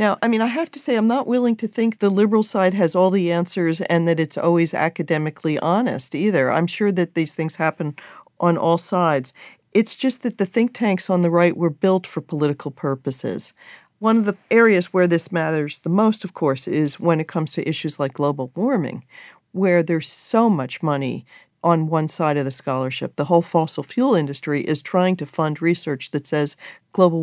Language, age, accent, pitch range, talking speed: English, 50-69, American, 150-190 Hz, 205 wpm